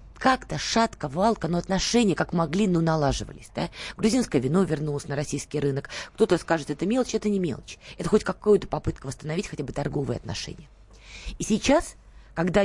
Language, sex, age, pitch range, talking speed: Russian, female, 20-39, 145-205 Hz, 180 wpm